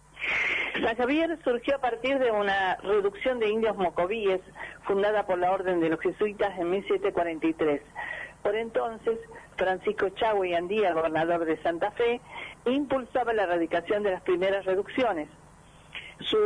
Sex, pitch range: female, 175-225 Hz